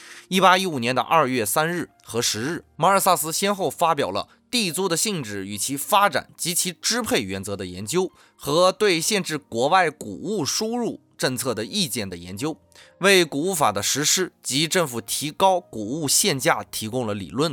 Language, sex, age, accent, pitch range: Chinese, male, 20-39, native, 120-185 Hz